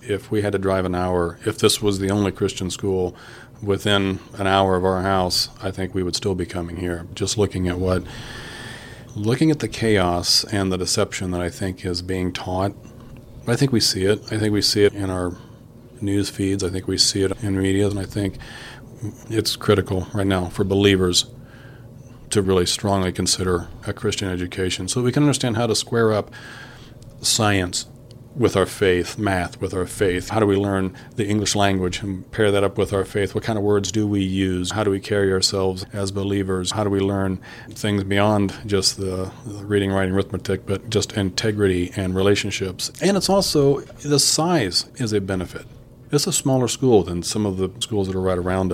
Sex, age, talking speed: male, 40-59, 200 wpm